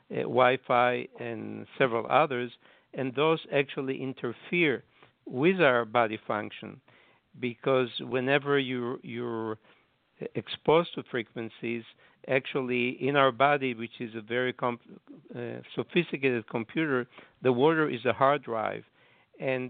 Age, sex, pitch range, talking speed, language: 60-79, male, 120-135 Hz, 115 wpm, English